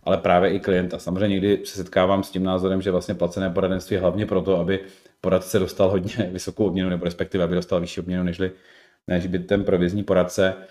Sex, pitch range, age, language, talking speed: male, 90-100 Hz, 30-49, Czech, 195 wpm